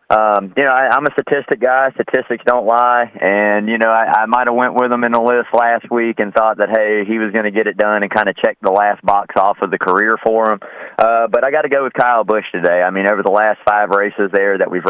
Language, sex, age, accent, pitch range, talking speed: English, male, 30-49, American, 100-120 Hz, 280 wpm